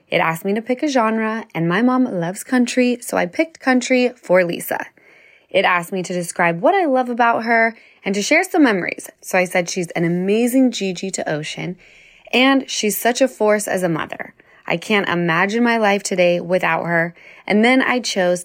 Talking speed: 200 wpm